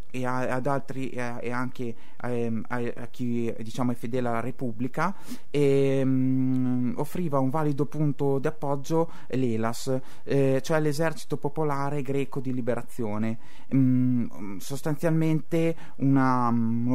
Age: 30-49